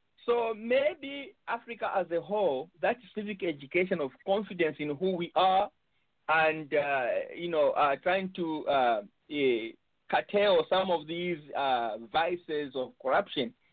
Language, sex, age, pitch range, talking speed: English, male, 50-69, 160-210 Hz, 140 wpm